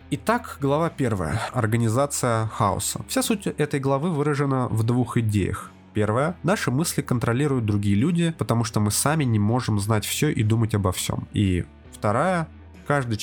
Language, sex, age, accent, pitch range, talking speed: Russian, male, 20-39, native, 110-145 Hz, 155 wpm